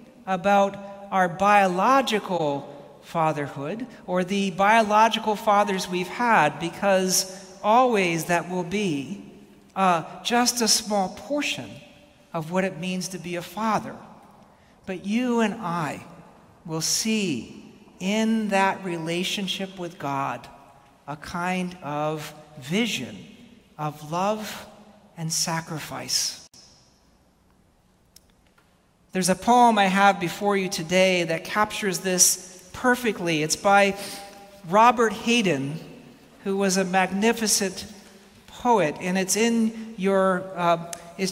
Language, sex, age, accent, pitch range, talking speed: English, male, 60-79, American, 180-220 Hz, 105 wpm